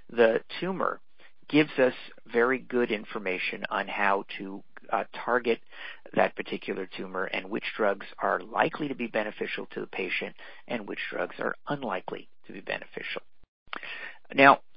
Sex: male